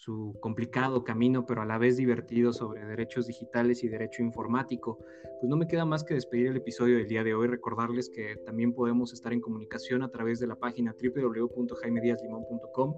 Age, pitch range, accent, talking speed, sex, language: 20-39, 115-130 Hz, Mexican, 185 wpm, male, Spanish